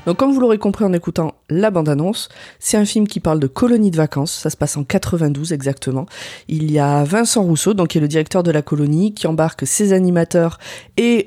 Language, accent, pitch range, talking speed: French, French, 155-190 Hz, 225 wpm